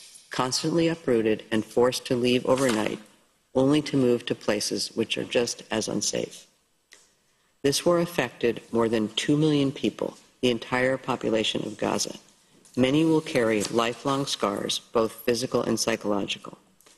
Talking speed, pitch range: 140 wpm, 115-135 Hz